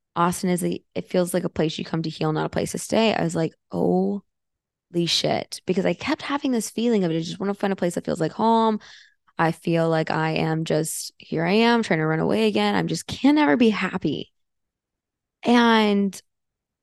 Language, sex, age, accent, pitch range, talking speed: English, female, 20-39, American, 170-215 Hz, 220 wpm